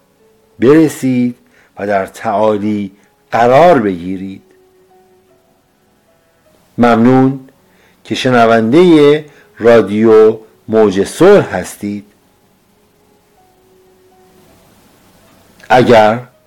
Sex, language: male, Persian